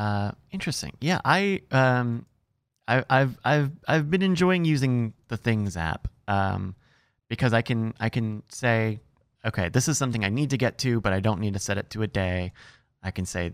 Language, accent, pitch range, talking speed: English, American, 95-125 Hz, 195 wpm